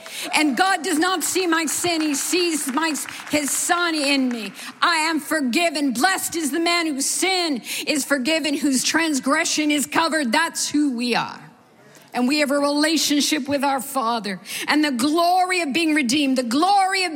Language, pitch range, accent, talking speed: English, 235-300 Hz, American, 170 wpm